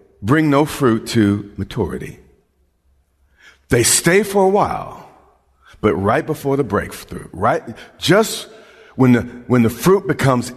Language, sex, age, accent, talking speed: English, male, 50-69, American, 130 wpm